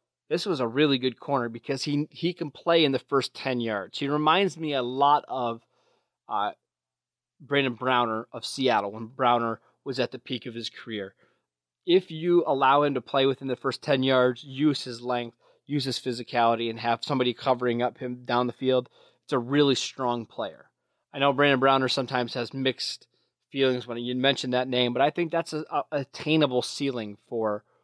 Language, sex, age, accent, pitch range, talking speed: English, male, 20-39, American, 120-140 Hz, 195 wpm